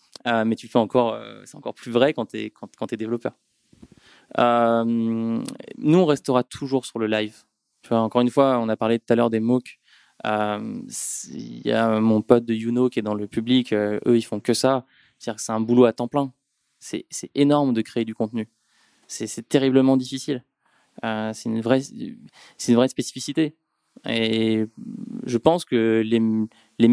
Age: 20-39